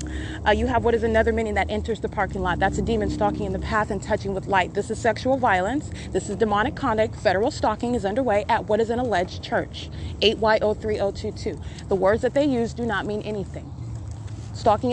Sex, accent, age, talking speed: female, American, 30-49, 210 wpm